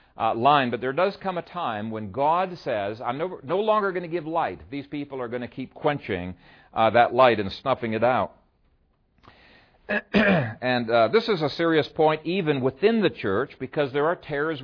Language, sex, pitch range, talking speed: English, male, 120-160 Hz, 195 wpm